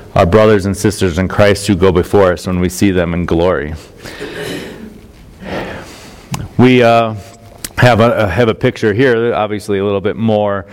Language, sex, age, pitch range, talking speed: English, male, 30-49, 95-115 Hz, 160 wpm